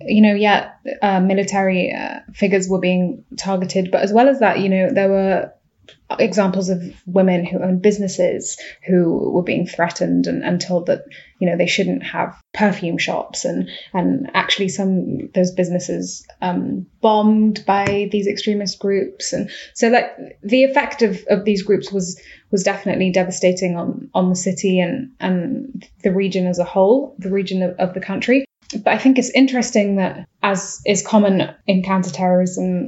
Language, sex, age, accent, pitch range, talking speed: English, female, 10-29, British, 185-210 Hz, 170 wpm